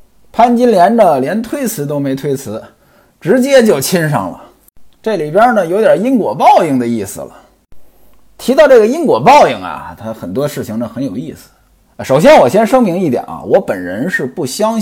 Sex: male